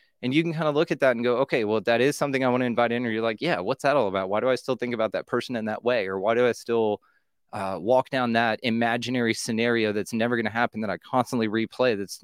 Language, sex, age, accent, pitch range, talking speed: English, male, 20-39, American, 110-130 Hz, 295 wpm